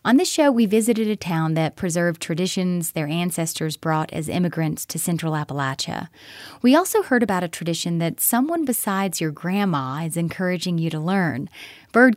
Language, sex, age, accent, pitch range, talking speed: English, female, 30-49, American, 160-220 Hz, 175 wpm